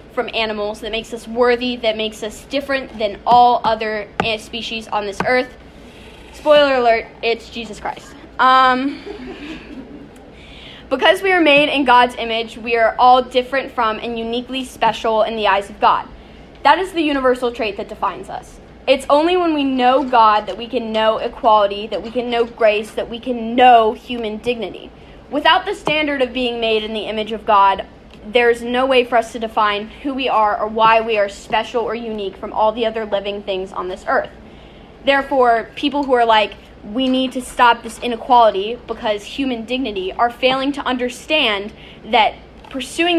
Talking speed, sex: 180 wpm, female